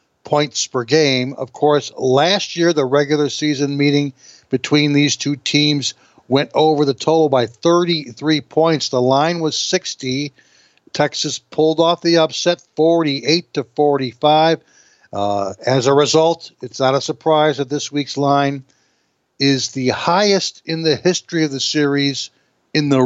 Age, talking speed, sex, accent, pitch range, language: 60-79, 150 wpm, male, American, 130-155 Hz, English